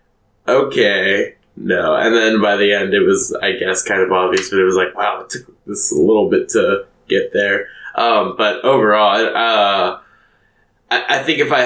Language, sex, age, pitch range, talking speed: English, male, 20-39, 95-135 Hz, 180 wpm